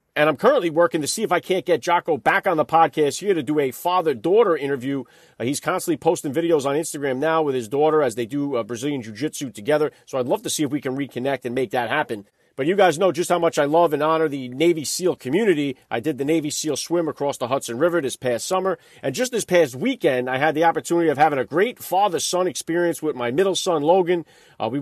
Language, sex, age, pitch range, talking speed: English, male, 40-59, 140-170 Hz, 245 wpm